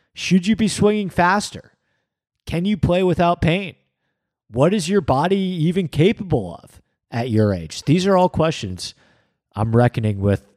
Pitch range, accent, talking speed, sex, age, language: 110-165 Hz, American, 155 wpm, male, 40-59, English